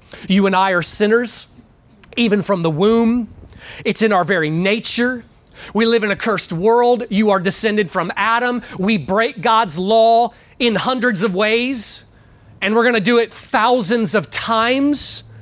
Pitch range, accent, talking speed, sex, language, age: 195-260 Hz, American, 160 wpm, male, English, 30-49